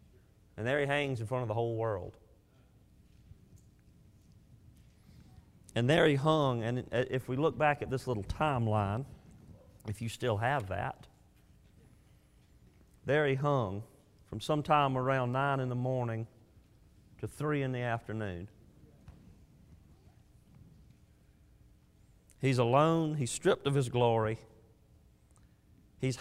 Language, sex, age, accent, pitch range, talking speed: English, male, 40-59, American, 105-135 Hz, 115 wpm